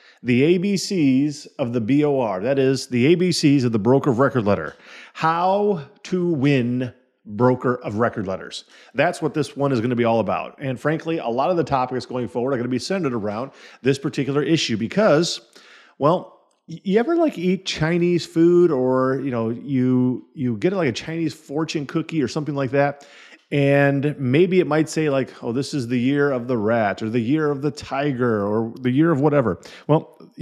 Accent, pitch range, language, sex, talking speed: American, 125-160 Hz, English, male, 195 wpm